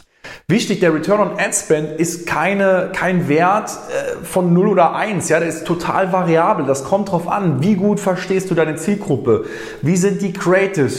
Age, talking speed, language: 30-49, 170 wpm, German